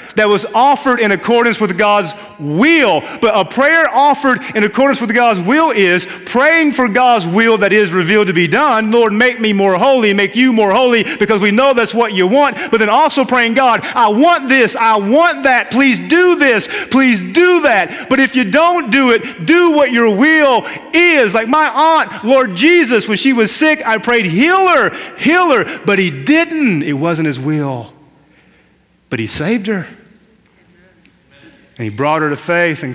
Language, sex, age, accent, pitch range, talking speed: English, male, 40-59, American, 155-250 Hz, 190 wpm